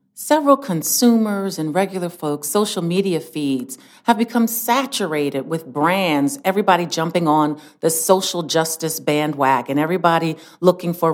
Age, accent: 40-59, American